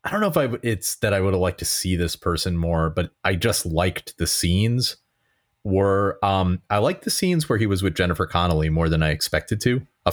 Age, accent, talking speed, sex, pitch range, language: 30-49, American, 235 wpm, male, 80-100 Hz, English